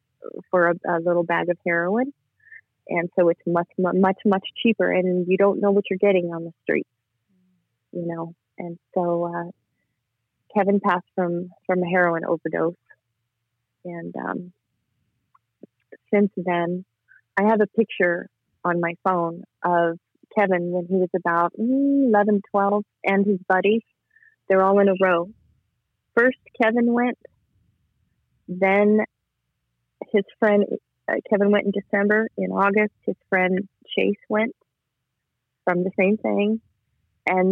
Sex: female